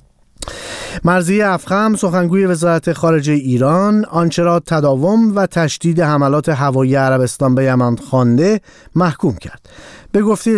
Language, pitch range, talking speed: Persian, 130-180 Hz, 120 wpm